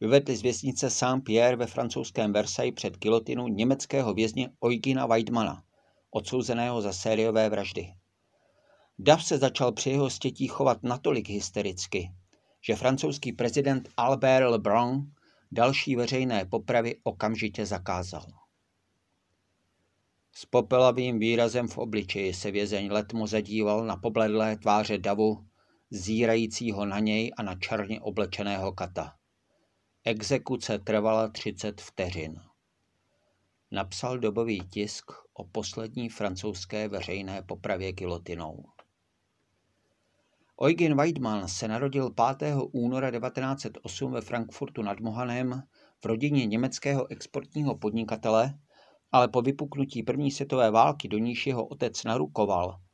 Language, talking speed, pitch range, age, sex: Czech, 110 wpm, 105-125 Hz, 50-69, male